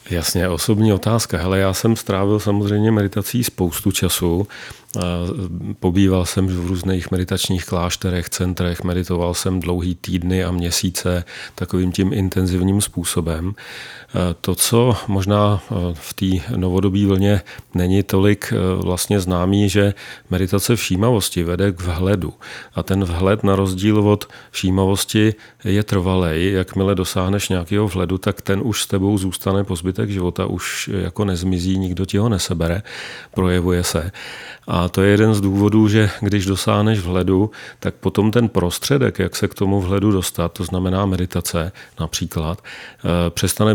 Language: Czech